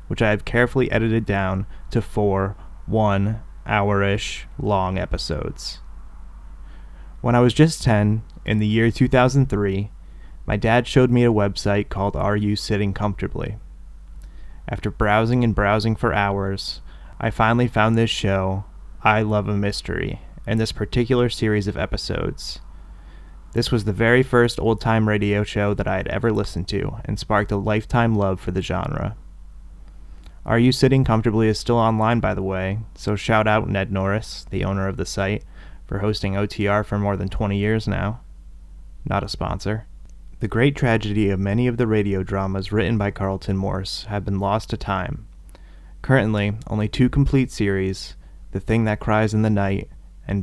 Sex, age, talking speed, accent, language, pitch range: male, 20-39, 165 wpm, American, English, 95-110 Hz